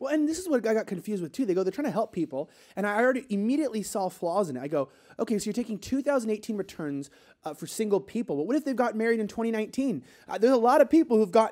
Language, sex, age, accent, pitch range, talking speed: English, male, 20-39, American, 160-235 Hz, 270 wpm